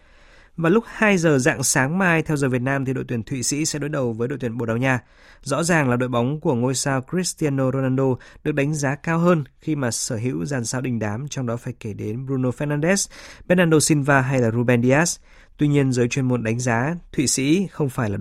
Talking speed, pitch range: 240 wpm, 125-155 Hz